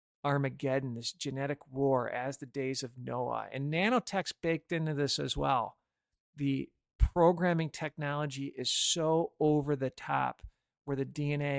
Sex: male